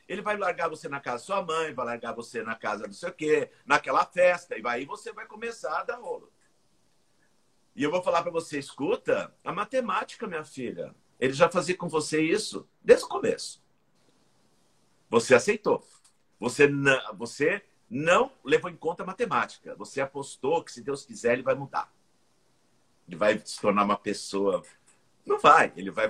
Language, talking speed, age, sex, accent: Portuguese, 175 wpm, 50-69, male, Brazilian